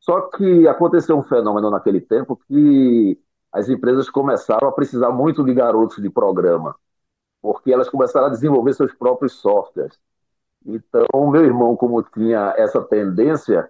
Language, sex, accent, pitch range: Portuguese, male, Brazilian, 120-165 Hz